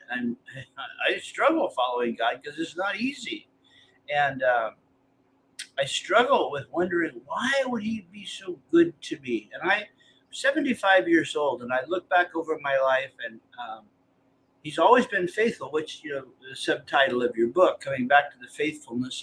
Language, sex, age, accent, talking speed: English, male, 50-69, American, 170 wpm